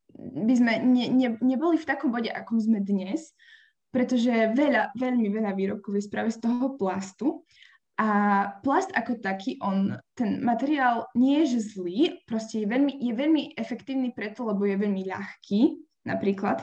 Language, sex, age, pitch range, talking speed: Slovak, female, 10-29, 205-245 Hz, 155 wpm